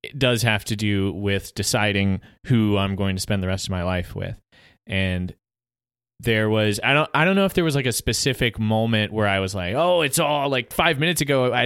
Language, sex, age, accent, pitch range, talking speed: English, male, 20-39, American, 100-120 Hz, 230 wpm